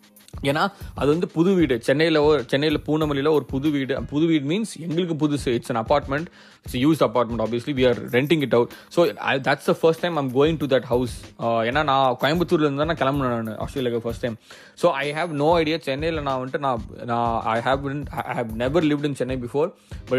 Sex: male